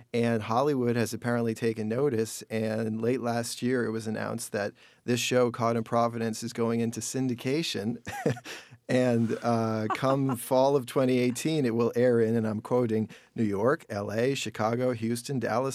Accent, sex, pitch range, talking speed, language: American, male, 115-125 Hz, 160 wpm, English